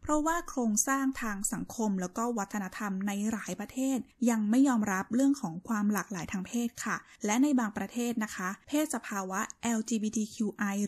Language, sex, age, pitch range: Thai, female, 10-29, 200-255 Hz